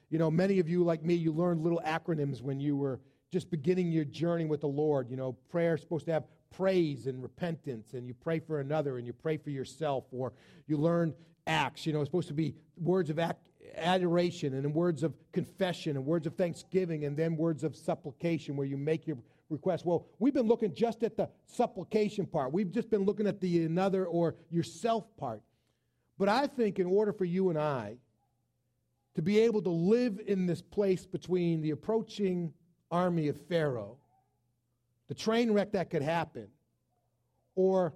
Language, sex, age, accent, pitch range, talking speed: English, male, 40-59, American, 145-195 Hz, 190 wpm